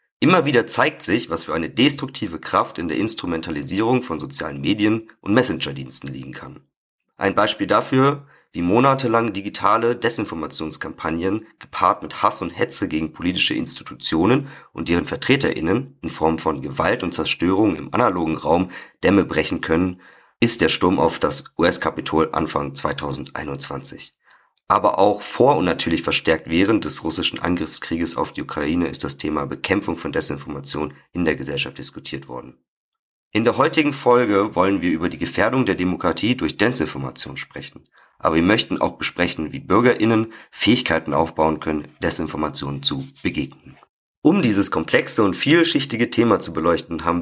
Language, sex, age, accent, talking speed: German, male, 40-59, German, 150 wpm